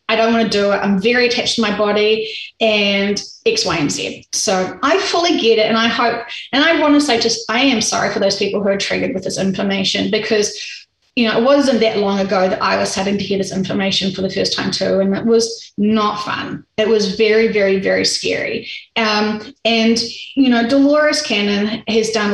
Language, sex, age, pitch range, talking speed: English, female, 30-49, 205-240 Hz, 225 wpm